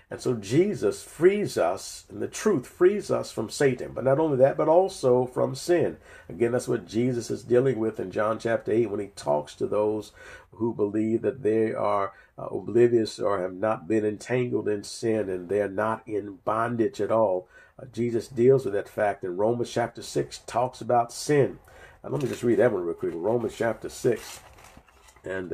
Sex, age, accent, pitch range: male, 50-69, American, 110-130 Hz